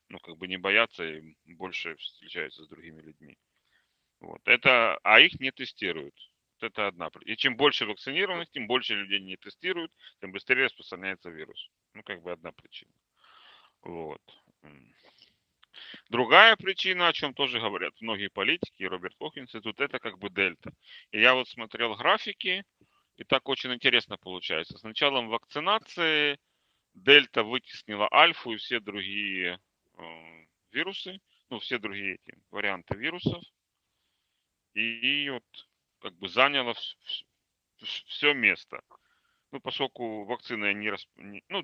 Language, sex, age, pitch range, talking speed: Russian, male, 30-49, 100-140 Hz, 135 wpm